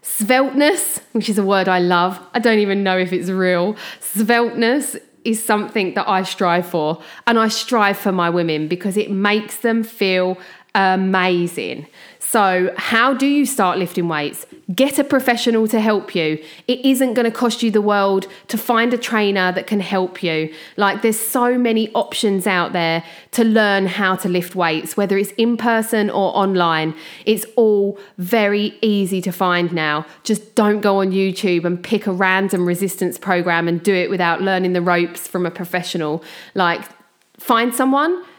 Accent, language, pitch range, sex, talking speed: British, English, 180-235 Hz, female, 175 wpm